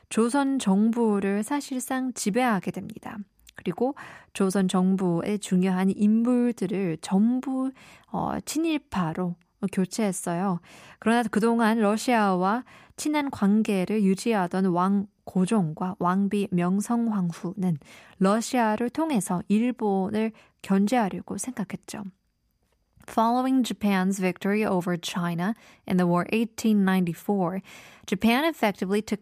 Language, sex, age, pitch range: Korean, female, 20-39, 185-230 Hz